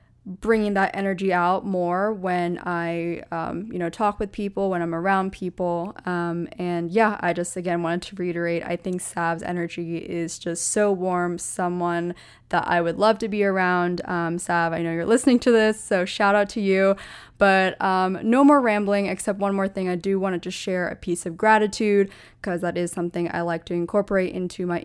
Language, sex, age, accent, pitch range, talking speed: English, female, 20-39, American, 180-210 Hz, 205 wpm